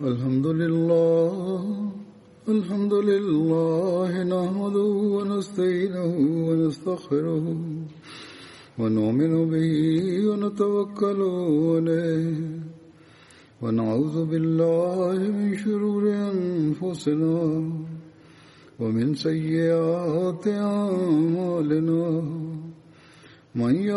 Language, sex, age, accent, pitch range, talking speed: Russian, male, 50-69, Indian, 160-200 Hz, 45 wpm